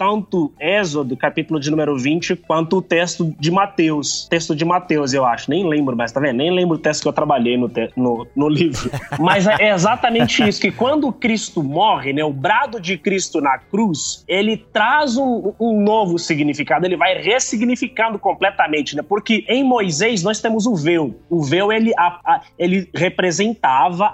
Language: Portuguese